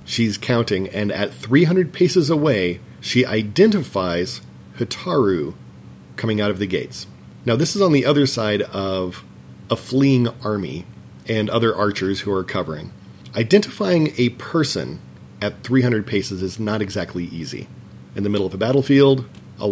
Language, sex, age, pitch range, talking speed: English, male, 40-59, 100-130 Hz, 150 wpm